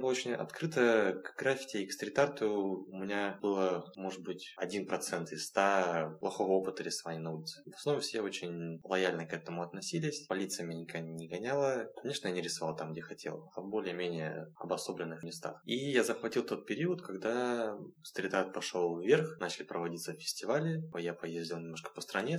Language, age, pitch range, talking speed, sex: Russian, 20-39, 85-110 Hz, 165 wpm, male